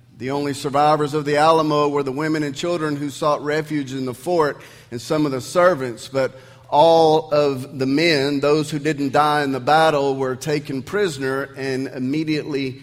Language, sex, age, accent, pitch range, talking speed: English, male, 40-59, American, 130-155 Hz, 180 wpm